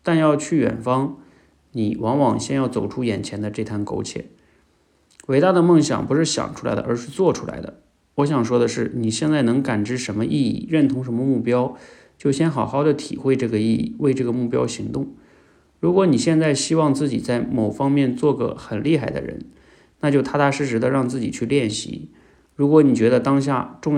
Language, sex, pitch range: Chinese, male, 110-145 Hz